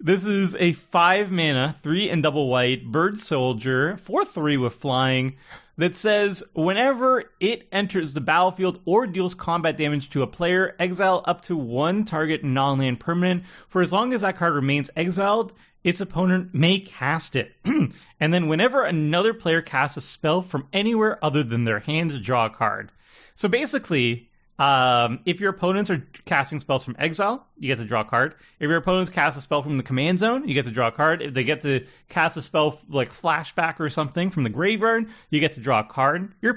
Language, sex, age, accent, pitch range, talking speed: English, male, 30-49, American, 135-185 Hz, 190 wpm